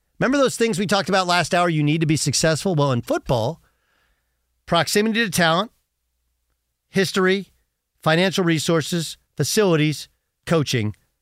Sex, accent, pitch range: male, American, 125-190 Hz